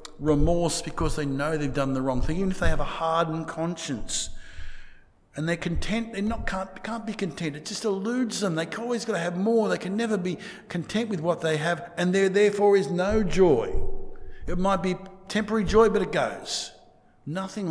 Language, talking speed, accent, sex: English, 200 wpm, Australian, male